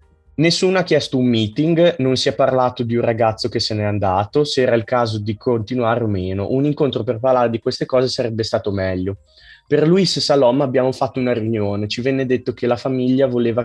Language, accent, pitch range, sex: Italian, native, 105-130 Hz, male